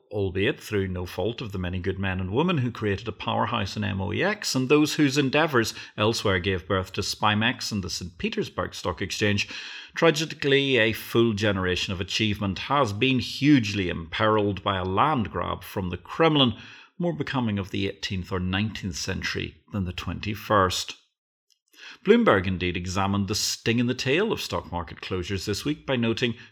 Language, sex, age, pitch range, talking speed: English, male, 40-59, 95-130 Hz, 170 wpm